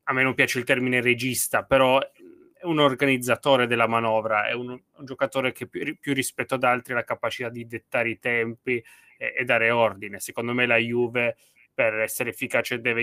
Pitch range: 110-125 Hz